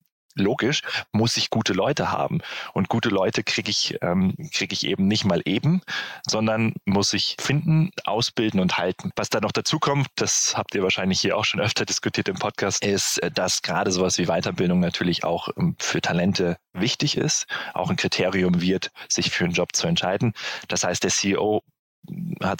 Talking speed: 180 wpm